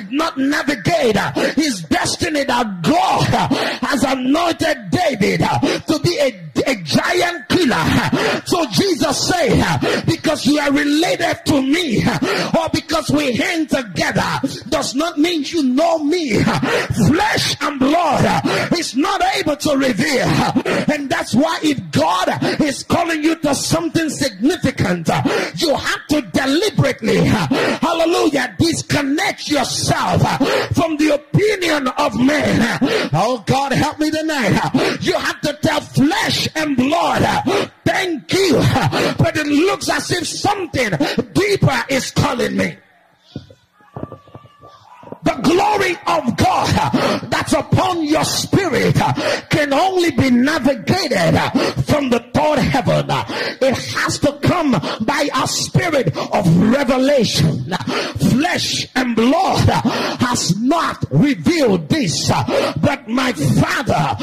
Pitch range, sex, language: 270-325 Hz, male, English